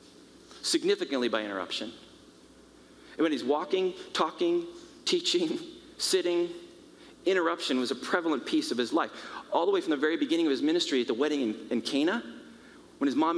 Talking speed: 165 wpm